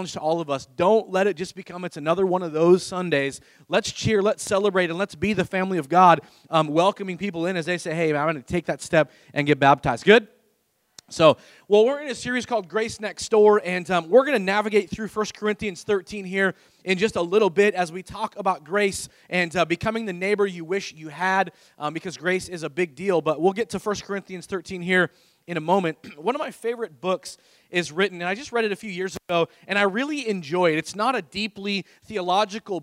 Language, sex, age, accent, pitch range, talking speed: English, male, 30-49, American, 170-205 Hz, 235 wpm